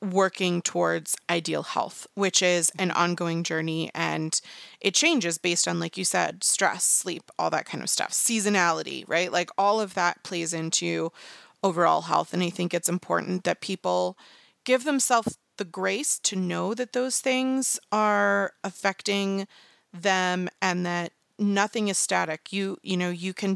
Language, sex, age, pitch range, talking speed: English, female, 30-49, 170-200 Hz, 160 wpm